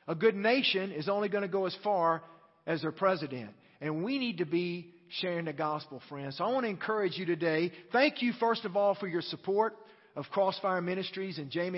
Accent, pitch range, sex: American, 155-195 Hz, male